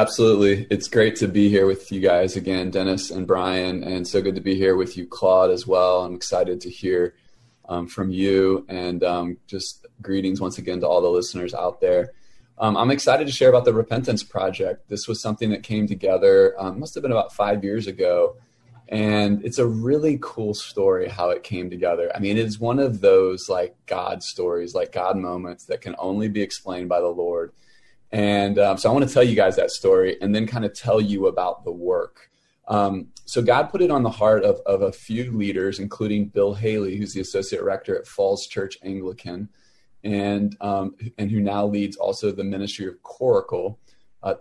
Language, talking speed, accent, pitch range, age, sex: English, 205 wpm, American, 95-120 Hz, 20-39, male